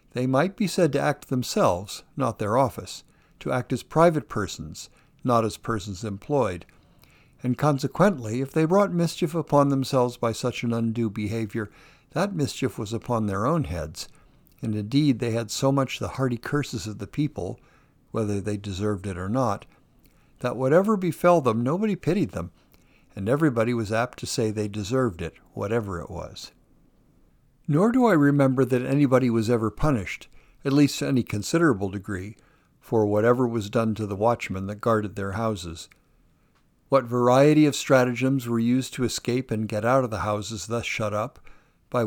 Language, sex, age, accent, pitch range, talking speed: English, male, 60-79, American, 105-140 Hz, 170 wpm